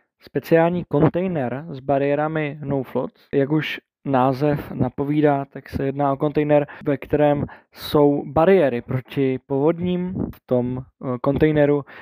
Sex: male